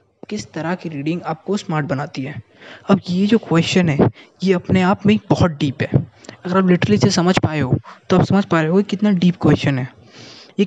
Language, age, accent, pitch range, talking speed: Hindi, 20-39, native, 140-185 Hz, 220 wpm